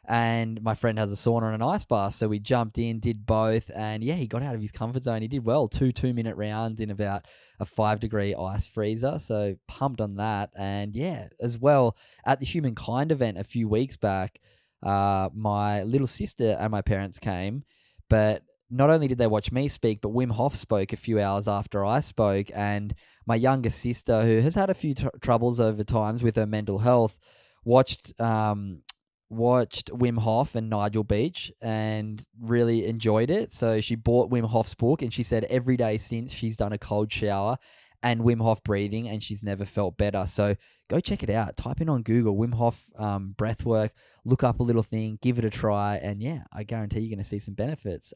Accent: Australian